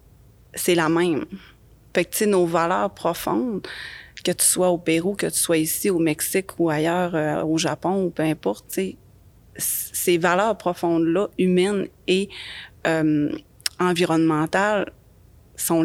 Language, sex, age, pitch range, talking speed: French, female, 30-49, 160-180 Hz, 150 wpm